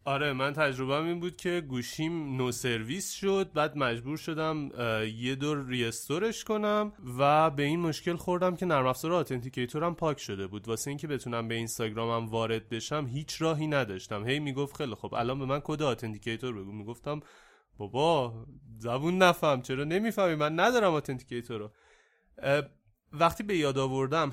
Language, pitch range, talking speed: Persian, 115-160 Hz, 155 wpm